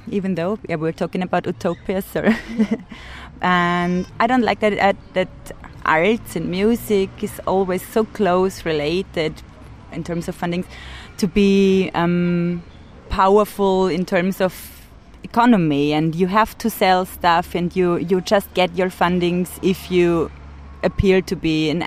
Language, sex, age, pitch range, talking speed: French, female, 20-39, 160-200 Hz, 145 wpm